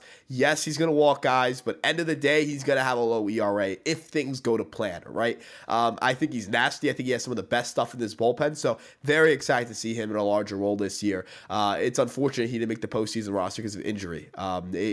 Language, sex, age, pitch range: English, male, 20-39, 100-140 Hz